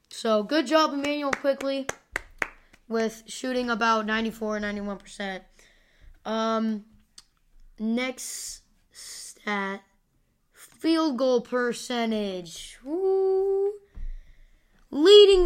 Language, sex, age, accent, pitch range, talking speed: English, female, 10-29, American, 225-320 Hz, 60 wpm